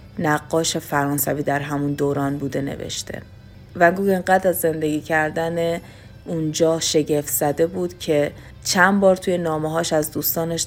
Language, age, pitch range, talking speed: Persian, 30-49, 145-165 Hz, 130 wpm